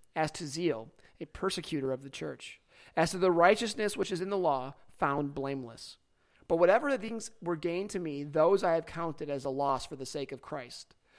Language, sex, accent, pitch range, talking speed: English, male, American, 135-170 Hz, 210 wpm